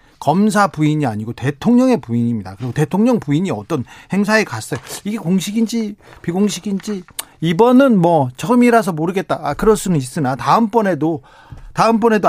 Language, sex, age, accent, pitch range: Korean, male, 40-59, native, 145-210 Hz